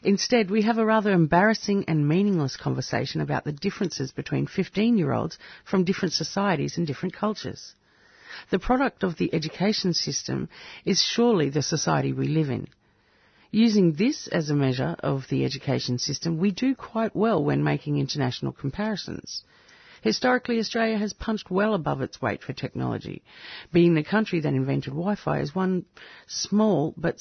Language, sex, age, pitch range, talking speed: English, female, 50-69, 150-215 Hz, 155 wpm